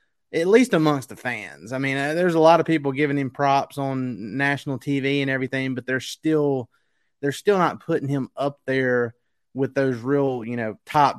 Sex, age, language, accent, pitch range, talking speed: male, 30-49, English, American, 125-145 Hz, 190 wpm